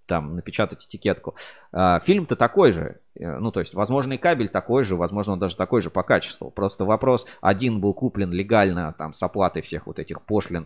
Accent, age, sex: native, 20-39, male